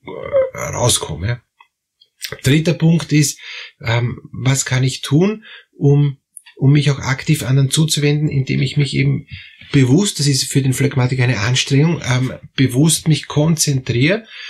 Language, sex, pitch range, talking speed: German, male, 125-150 Hz, 125 wpm